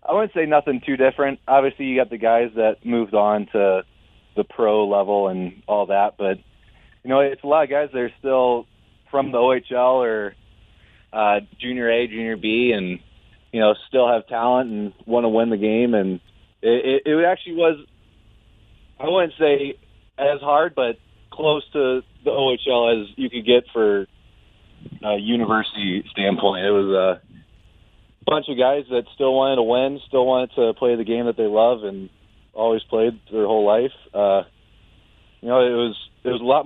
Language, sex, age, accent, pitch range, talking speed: English, male, 30-49, American, 105-130 Hz, 185 wpm